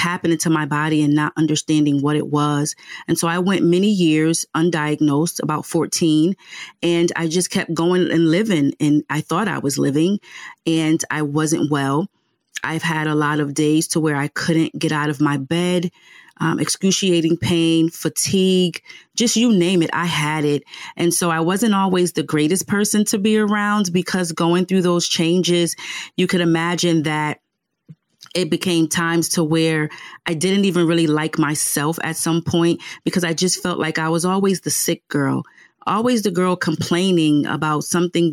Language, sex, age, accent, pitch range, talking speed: English, female, 30-49, American, 155-175 Hz, 175 wpm